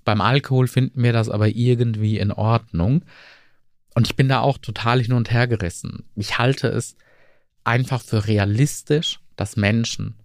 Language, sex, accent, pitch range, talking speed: German, male, German, 105-130 Hz, 150 wpm